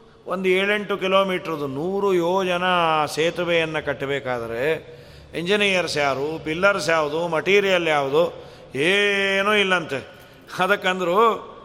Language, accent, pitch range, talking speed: Kannada, native, 165-220 Hz, 80 wpm